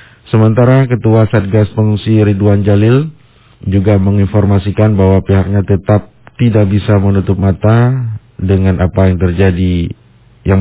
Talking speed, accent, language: 115 wpm, Indonesian, English